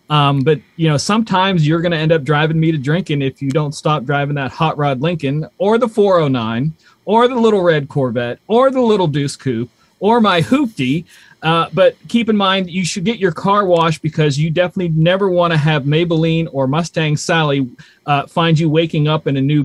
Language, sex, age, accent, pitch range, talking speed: English, male, 30-49, American, 145-185 Hz, 210 wpm